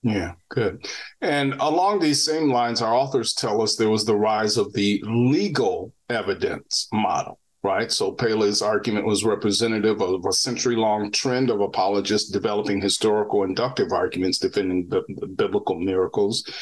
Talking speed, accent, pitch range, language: 150 wpm, American, 105-135 Hz, English